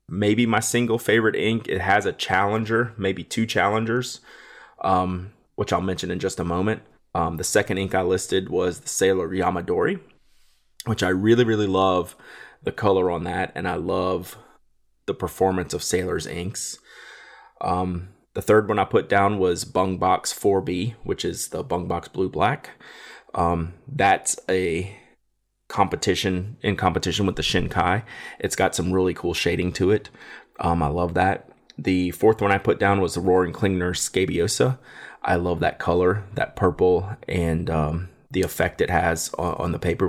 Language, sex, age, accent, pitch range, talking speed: English, male, 30-49, American, 90-100 Hz, 170 wpm